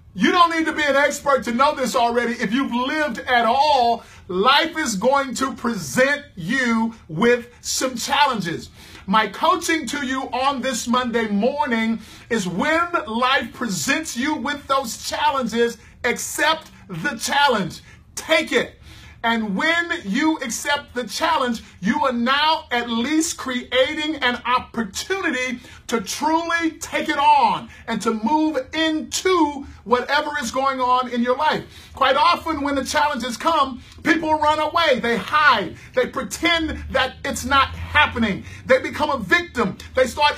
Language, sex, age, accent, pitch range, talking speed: English, male, 50-69, American, 245-310 Hz, 145 wpm